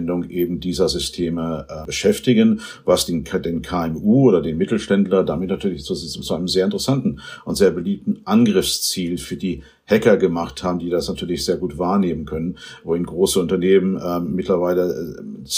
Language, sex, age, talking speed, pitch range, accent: German, male, 50-69, 160 wpm, 90-130 Hz, German